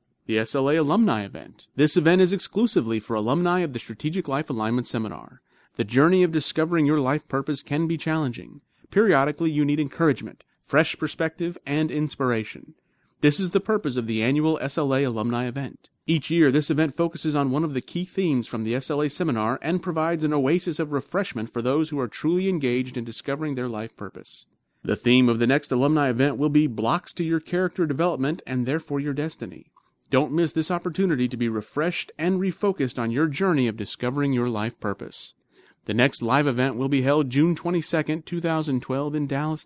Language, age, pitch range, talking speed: English, 30-49, 125-165 Hz, 185 wpm